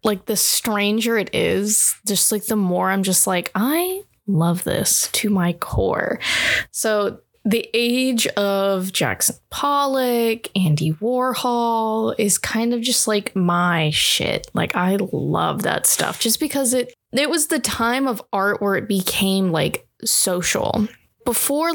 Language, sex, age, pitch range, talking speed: English, female, 10-29, 185-230 Hz, 145 wpm